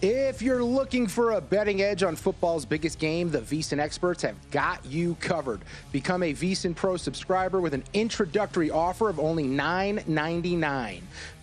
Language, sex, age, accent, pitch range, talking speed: English, male, 30-49, American, 145-195 Hz, 160 wpm